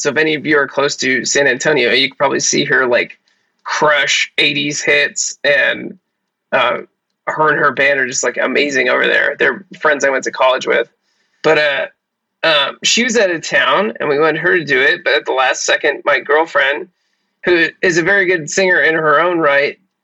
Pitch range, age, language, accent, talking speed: 150-185 Hz, 20-39, English, American, 210 wpm